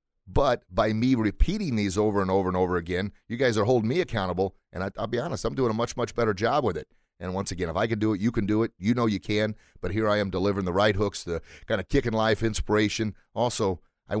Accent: American